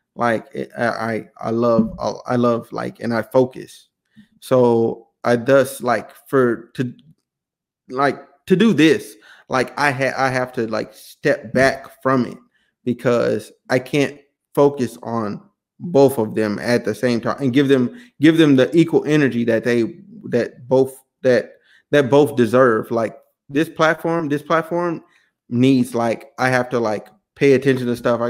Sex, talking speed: male, 160 wpm